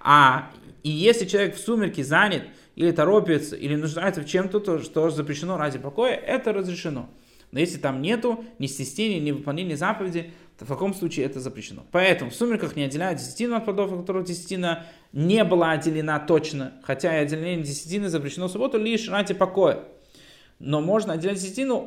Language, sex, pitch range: Russian, male, 145-195 Hz